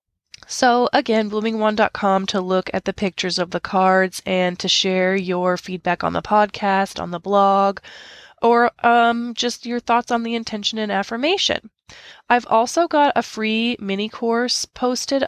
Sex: female